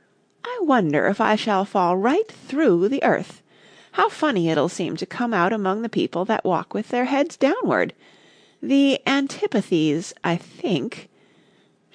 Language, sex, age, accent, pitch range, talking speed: English, female, 40-59, American, 175-265 Hz, 145 wpm